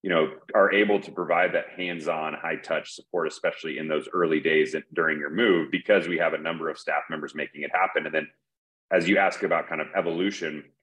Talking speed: 210 wpm